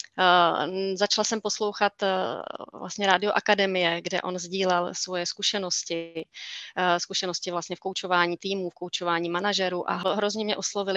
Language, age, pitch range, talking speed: Czech, 30-49, 175-200 Hz, 140 wpm